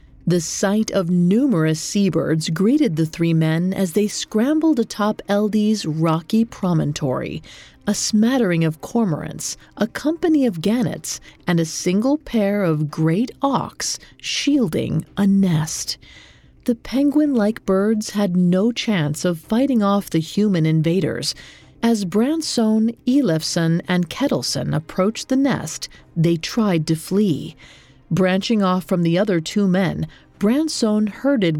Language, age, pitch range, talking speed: English, 40-59, 165-230 Hz, 125 wpm